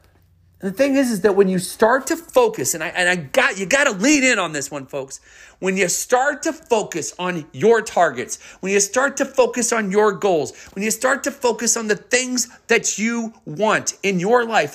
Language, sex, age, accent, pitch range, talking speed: English, male, 40-59, American, 180-225 Hz, 225 wpm